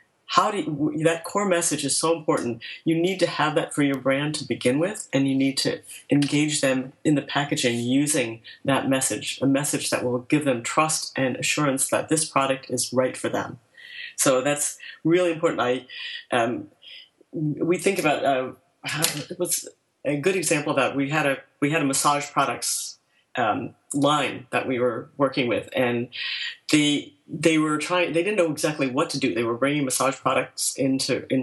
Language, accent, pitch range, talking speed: English, American, 130-160 Hz, 185 wpm